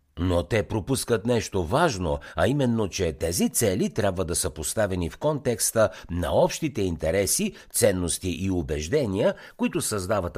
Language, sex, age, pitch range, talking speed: Bulgarian, male, 60-79, 80-120 Hz, 140 wpm